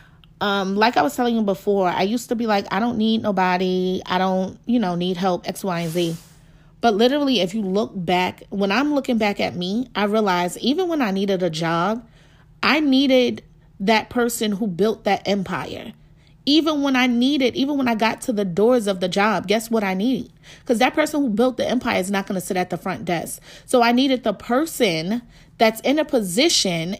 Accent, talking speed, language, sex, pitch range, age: American, 215 wpm, English, female, 190-255 Hz, 30-49